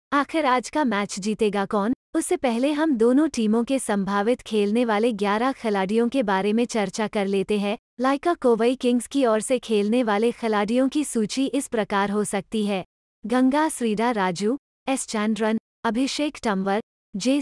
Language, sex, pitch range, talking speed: English, female, 210-260 Hz, 165 wpm